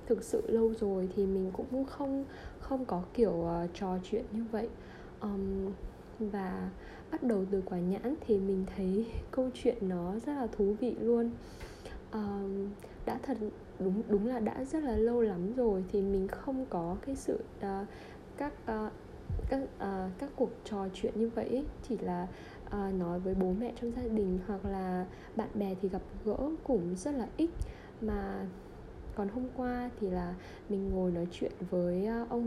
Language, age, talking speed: Vietnamese, 10-29, 180 wpm